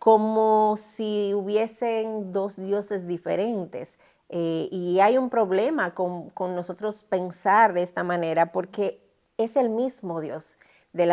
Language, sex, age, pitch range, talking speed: Spanish, female, 30-49, 185-235 Hz, 130 wpm